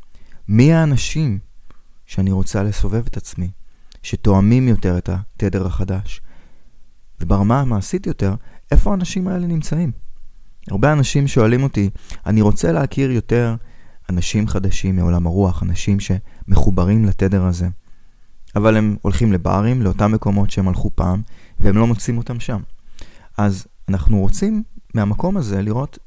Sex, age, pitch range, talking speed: male, 20-39, 95-115 Hz, 125 wpm